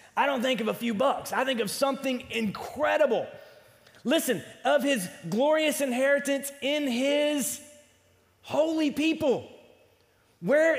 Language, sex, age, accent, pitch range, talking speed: English, male, 30-49, American, 225-290 Hz, 120 wpm